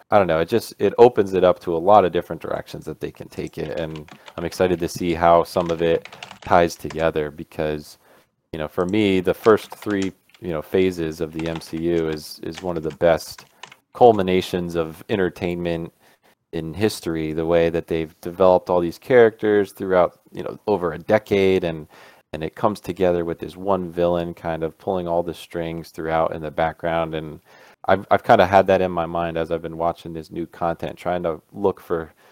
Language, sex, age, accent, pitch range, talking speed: English, male, 30-49, American, 80-90 Hz, 205 wpm